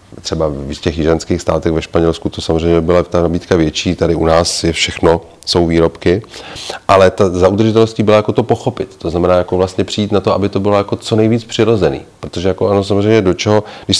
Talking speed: 210 wpm